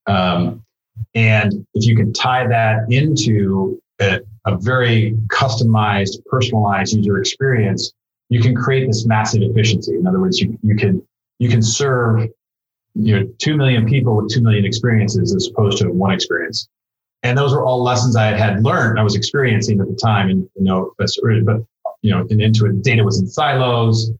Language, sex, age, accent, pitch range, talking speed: English, male, 30-49, American, 105-120 Hz, 180 wpm